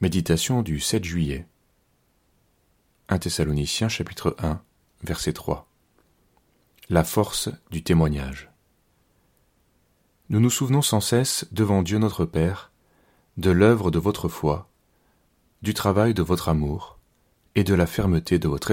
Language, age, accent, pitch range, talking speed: French, 40-59, French, 80-95 Hz, 125 wpm